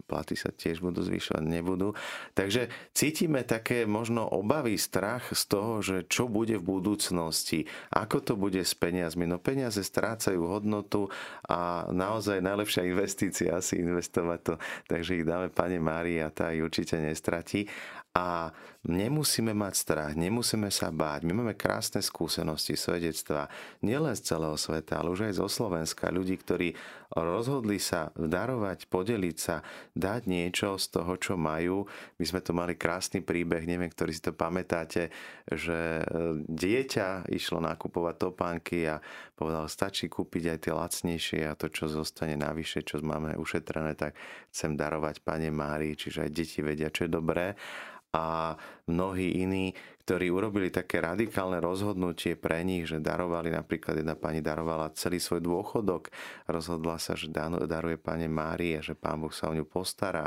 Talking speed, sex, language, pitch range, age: 155 wpm, male, Slovak, 80-95 Hz, 40-59